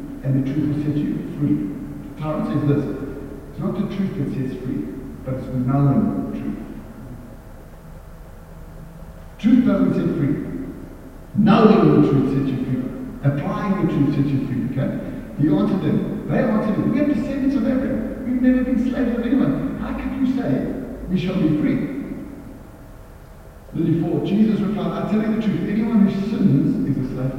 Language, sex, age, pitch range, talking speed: English, male, 60-79, 135-190 Hz, 175 wpm